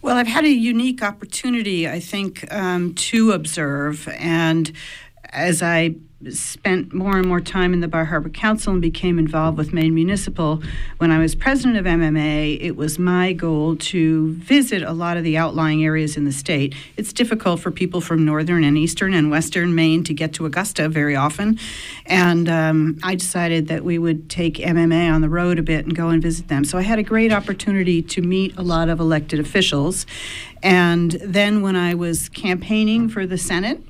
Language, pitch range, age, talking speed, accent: English, 150-185 Hz, 50-69, 195 wpm, American